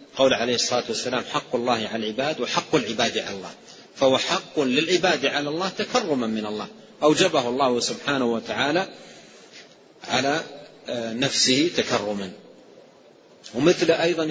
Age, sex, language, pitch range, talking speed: 40-59, male, Arabic, 120-165 Hz, 120 wpm